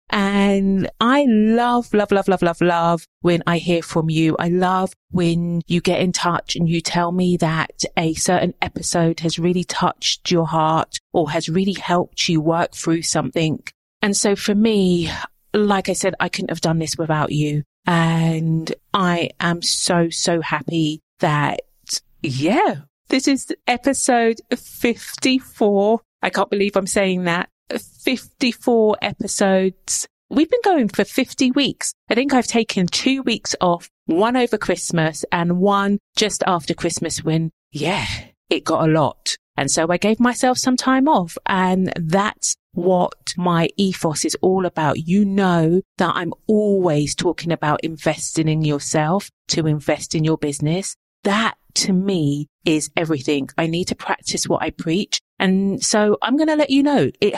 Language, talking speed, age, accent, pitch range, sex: English, 160 wpm, 40-59, British, 165-210 Hz, female